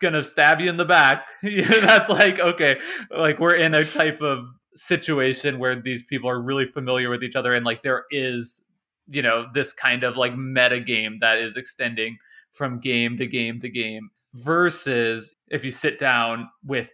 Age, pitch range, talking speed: 20-39, 115-145 Hz, 185 wpm